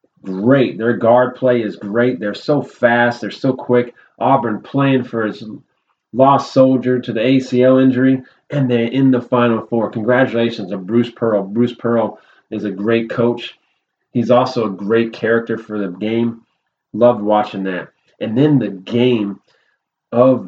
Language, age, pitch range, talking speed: English, 30-49, 105-125 Hz, 160 wpm